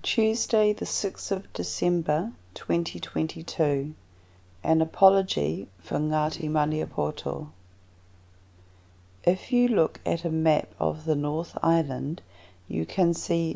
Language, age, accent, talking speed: English, 40-59, Australian, 105 wpm